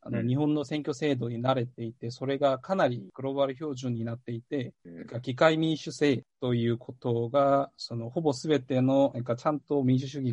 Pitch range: 125-150 Hz